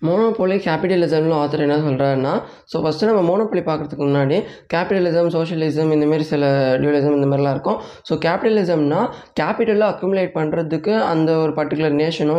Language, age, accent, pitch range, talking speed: Tamil, 20-39, native, 150-185 Hz, 135 wpm